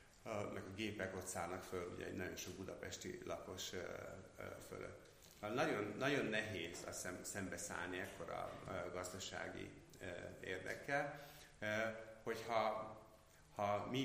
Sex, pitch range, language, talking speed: male, 90-120 Hz, Hungarian, 105 wpm